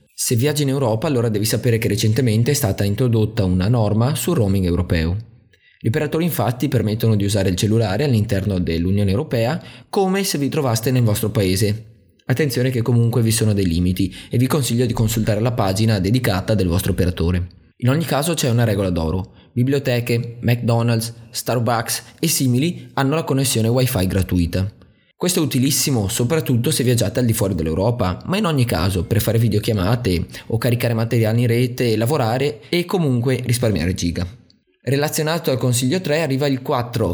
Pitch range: 100-130 Hz